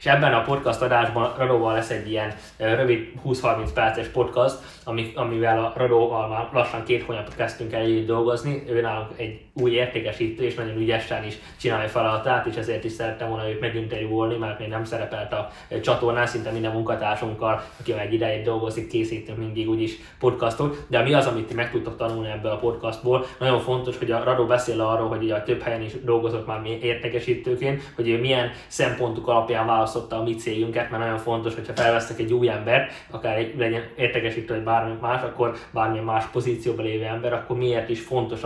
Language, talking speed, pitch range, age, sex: Hungarian, 185 wpm, 115-120 Hz, 20-39, male